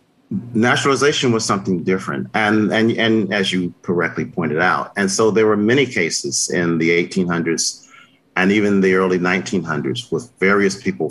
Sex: male